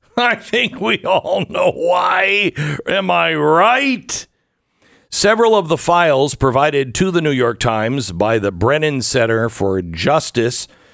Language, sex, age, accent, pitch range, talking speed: English, male, 50-69, American, 105-150 Hz, 135 wpm